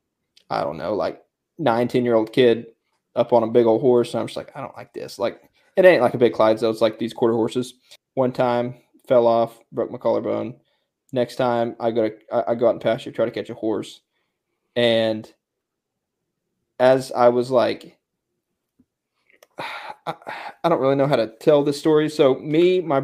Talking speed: 195 wpm